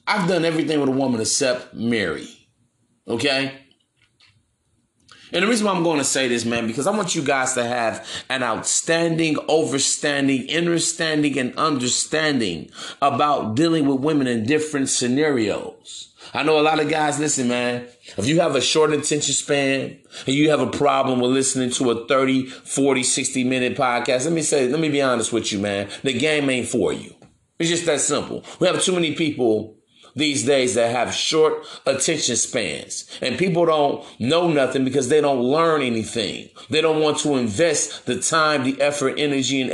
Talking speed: 180 wpm